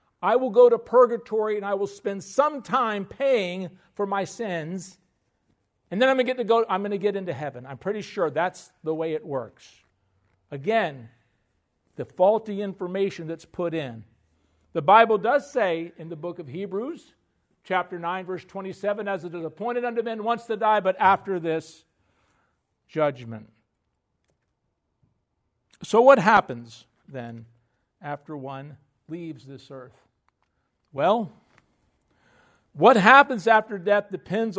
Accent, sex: American, male